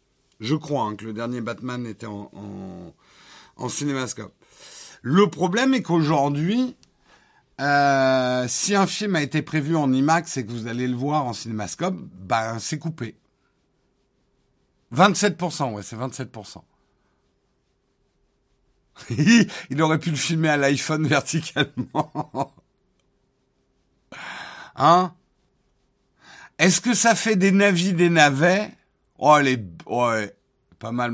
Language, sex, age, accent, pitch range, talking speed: French, male, 50-69, French, 125-170 Hz, 115 wpm